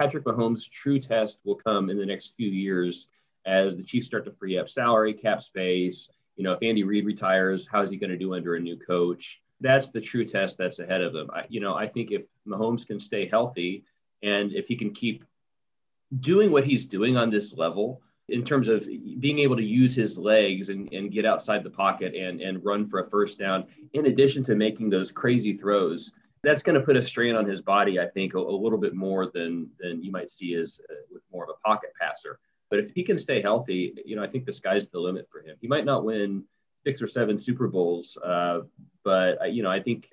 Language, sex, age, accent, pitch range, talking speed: English, male, 30-49, American, 95-120 Hz, 230 wpm